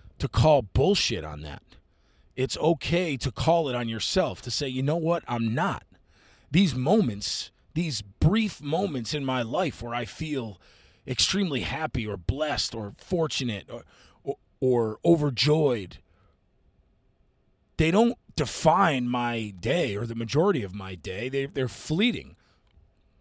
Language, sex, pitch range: English, male, 110-165 Hz